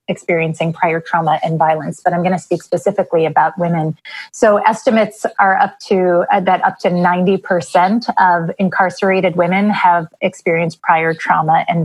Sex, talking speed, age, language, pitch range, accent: female, 155 wpm, 30-49, English, 175-210 Hz, American